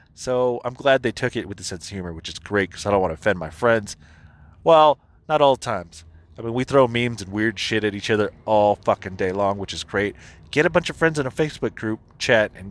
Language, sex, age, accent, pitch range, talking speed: English, male, 30-49, American, 90-140 Hz, 260 wpm